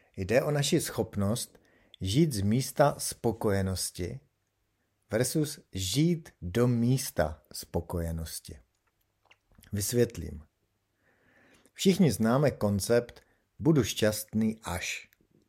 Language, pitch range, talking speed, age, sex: Czech, 95-125 Hz, 80 wpm, 50-69, male